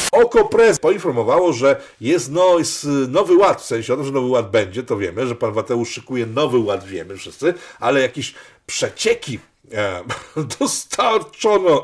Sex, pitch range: male, 125-180 Hz